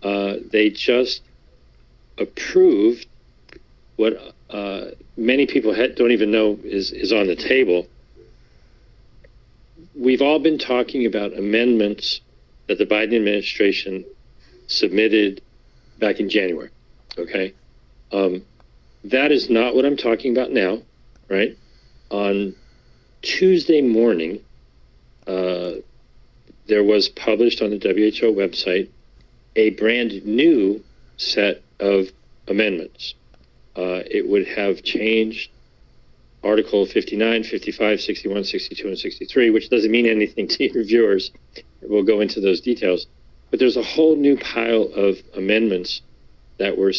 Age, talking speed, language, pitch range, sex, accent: 50-69, 115 wpm, English, 95-115 Hz, male, American